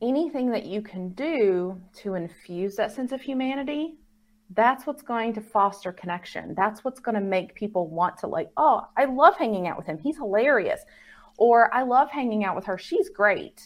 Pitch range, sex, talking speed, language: 200-250 Hz, female, 195 wpm, English